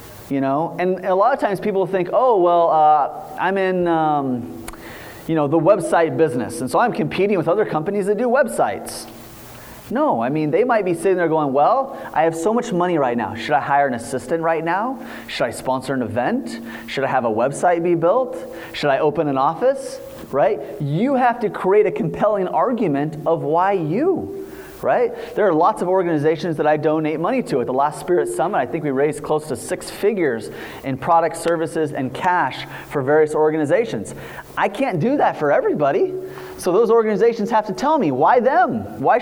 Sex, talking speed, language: male, 200 wpm, English